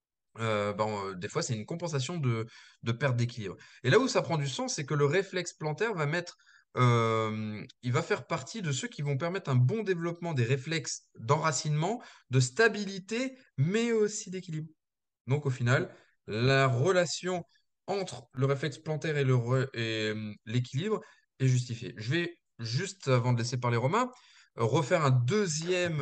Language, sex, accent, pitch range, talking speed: French, male, French, 120-175 Hz, 165 wpm